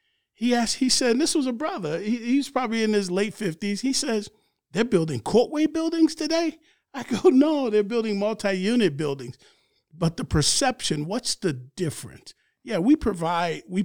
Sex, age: male, 50-69